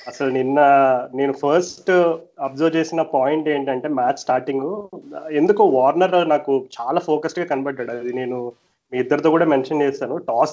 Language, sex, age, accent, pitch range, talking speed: Telugu, male, 30-49, native, 125-150 Hz, 140 wpm